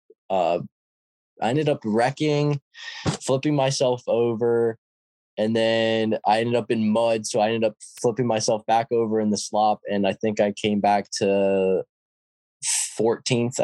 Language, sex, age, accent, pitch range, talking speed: English, male, 10-29, American, 95-115 Hz, 150 wpm